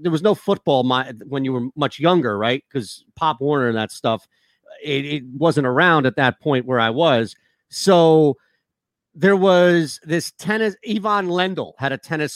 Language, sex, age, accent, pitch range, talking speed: English, male, 40-59, American, 150-210 Hz, 175 wpm